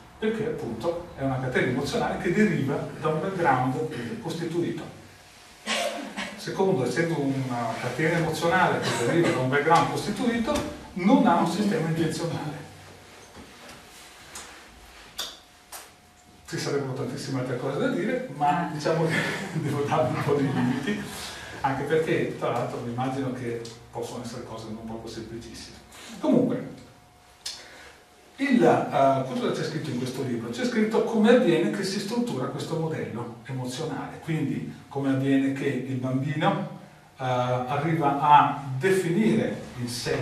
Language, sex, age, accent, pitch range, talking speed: Italian, male, 40-59, native, 125-165 Hz, 125 wpm